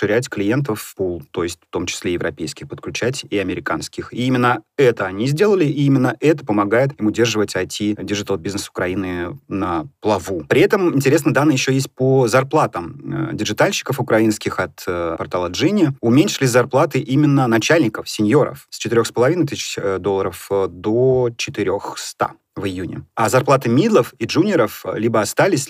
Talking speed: 140 wpm